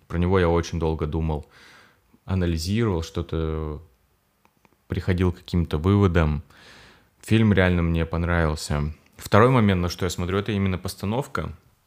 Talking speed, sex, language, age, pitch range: 120 wpm, male, Russian, 20-39, 85-100 Hz